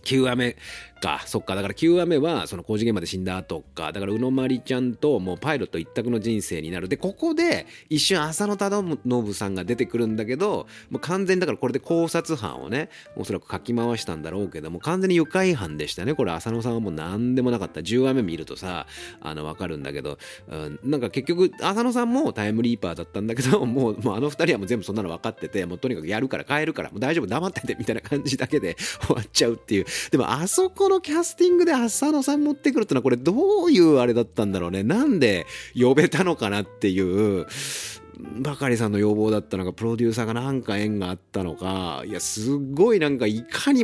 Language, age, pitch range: Japanese, 30-49, 100-160 Hz